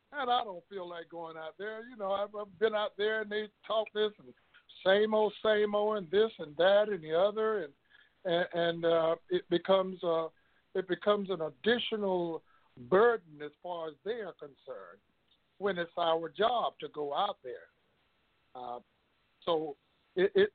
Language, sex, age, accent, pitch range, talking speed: English, male, 60-79, American, 165-215 Hz, 180 wpm